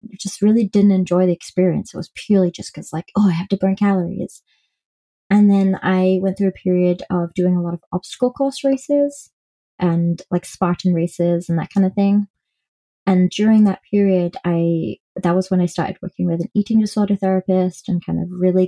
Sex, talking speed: female, 200 wpm